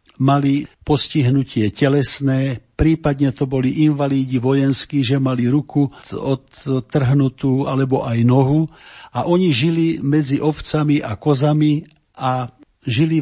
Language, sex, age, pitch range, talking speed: Slovak, male, 50-69, 130-155 Hz, 110 wpm